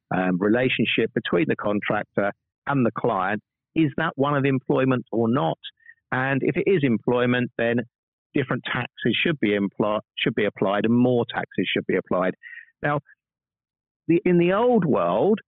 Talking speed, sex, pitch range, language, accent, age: 145 wpm, male, 115-150 Hz, English, British, 50-69